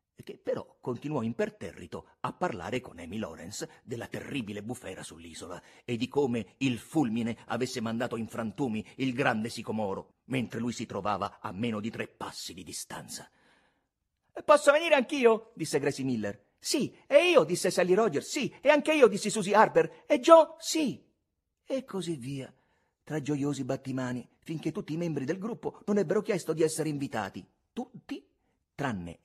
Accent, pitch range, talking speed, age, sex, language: native, 115-195 Hz, 160 wpm, 40-59, male, Italian